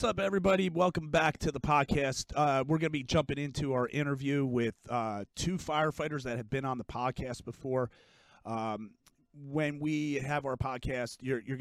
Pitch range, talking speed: 120-145 Hz, 185 wpm